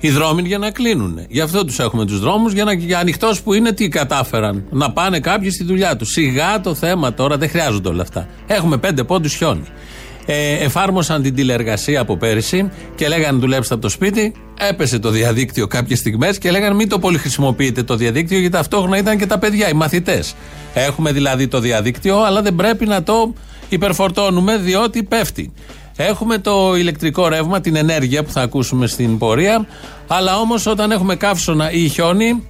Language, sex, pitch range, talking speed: Greek, male, 135-195 Hz, 185 wpm